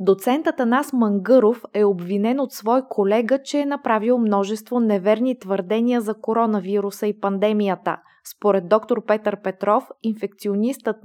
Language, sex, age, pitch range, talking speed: Bulgarian, female, 20-39, 200-240 Hz, 125 wpm